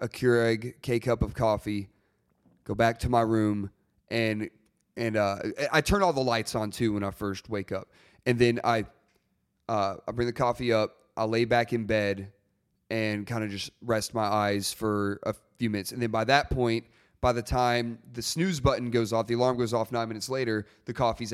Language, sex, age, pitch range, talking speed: English, male, 30-49, 110-145 Hz, 205 wpm